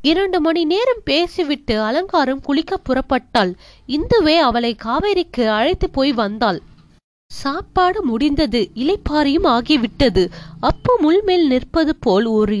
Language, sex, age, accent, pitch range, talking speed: Tamil, female, 20-39, native, 240-335 Hz, 105 wpm